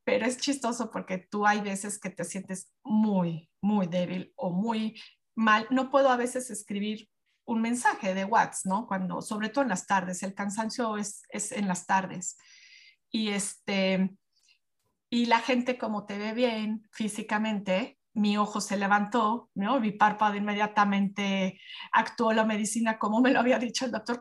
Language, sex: Spanish, female